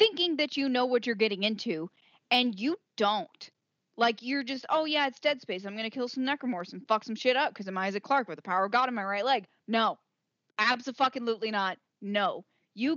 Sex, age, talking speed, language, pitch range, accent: female, 10-29, 220 wpm, English, 210-265 Hz, American